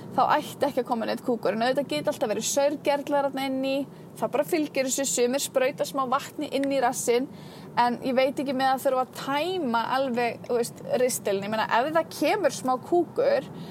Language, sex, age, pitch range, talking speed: English, female, 20-39, 230-290 Hz, 185 wpm